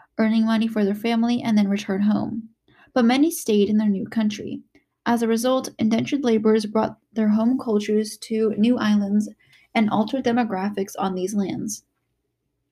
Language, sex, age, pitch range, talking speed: English, female, 10-29, 215-245 Hz, 160 wpm